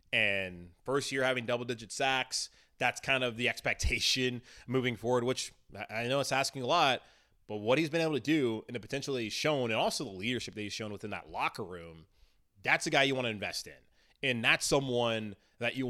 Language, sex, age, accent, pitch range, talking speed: English, male, 20-39, American, 105-130 Hz, 215 wpm